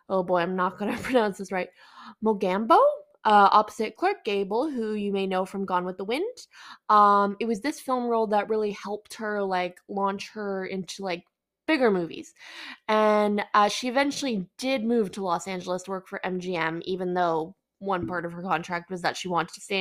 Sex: female